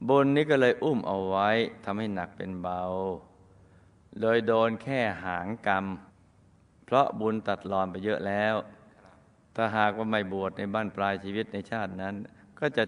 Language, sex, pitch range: Thai, male, 100-140 Hz